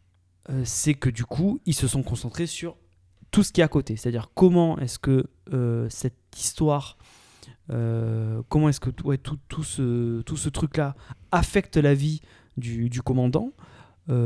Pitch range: 120-155 Hz